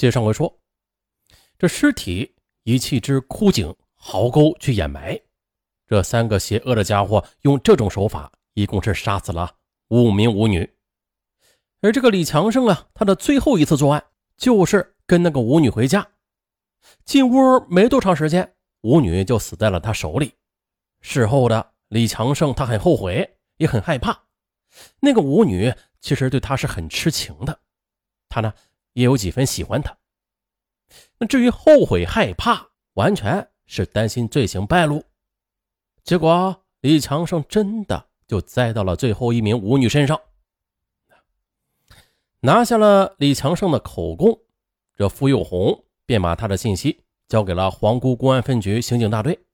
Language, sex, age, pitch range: Chinese, male, 30-49, 100-165 Hz